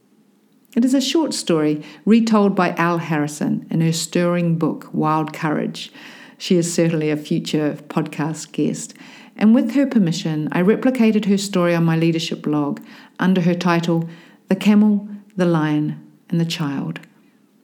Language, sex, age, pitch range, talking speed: English, female, 50-69, 165-235 Hz, 150 wpm